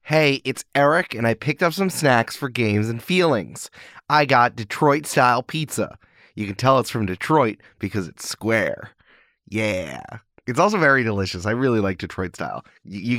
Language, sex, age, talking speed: English, male, 20-39, 165 wpm